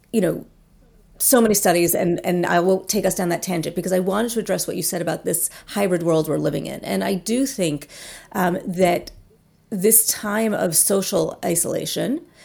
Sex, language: female, English